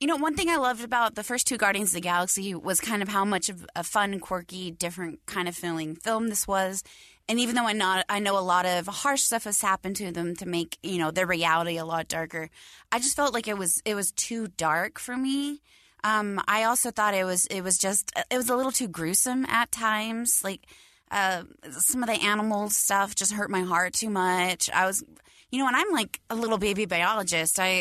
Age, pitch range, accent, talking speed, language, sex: 20-39, 165-215 Hz, American, 235 wpm, English, female